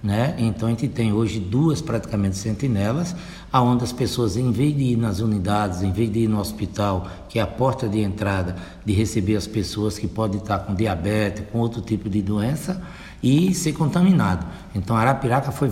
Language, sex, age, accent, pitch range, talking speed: Portuguese, male, 60-79, Brazilian, 110-155 Hz, 190 wpm